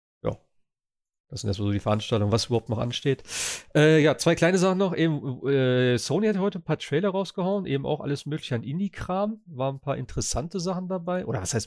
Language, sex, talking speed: German, male, 210 wpm